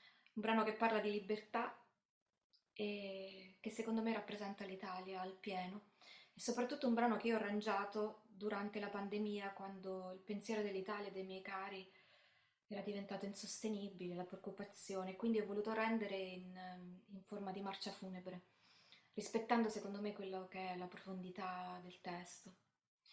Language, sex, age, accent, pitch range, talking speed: Italian, female, 20-39, native, 190-215 Hz, 150 wpm